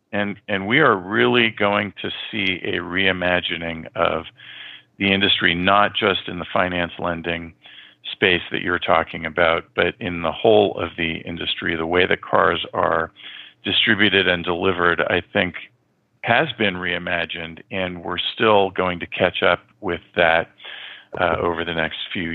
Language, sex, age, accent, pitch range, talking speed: English, male, 40-59, American, 85-100 Hz, 155 wpm